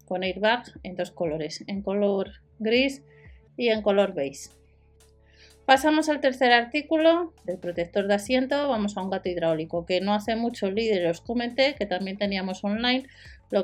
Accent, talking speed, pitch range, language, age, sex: Spanish, 165 wpm, 185-255 Hz, Spanish, 30-49, female